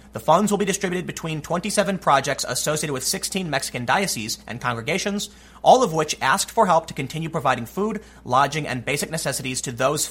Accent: American